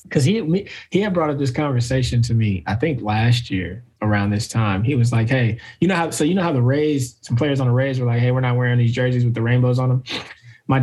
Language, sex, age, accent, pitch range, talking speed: English, male, 20-39, American, 115-135 Hz, 270 wpm